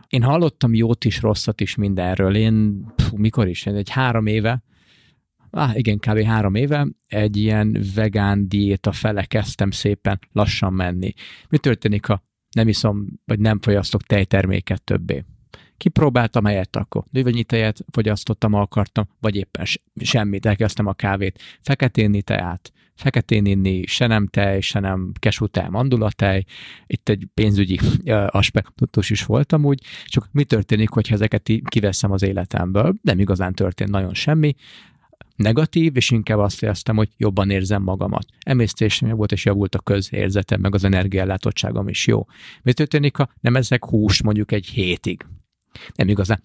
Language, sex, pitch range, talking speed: Hungarian, male, 100-120 Hz, 150 wpm